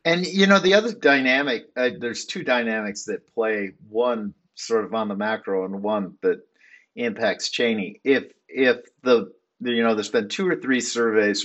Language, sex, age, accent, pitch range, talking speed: English, male, 50-69, American, 105-170 Hz, 185 wpm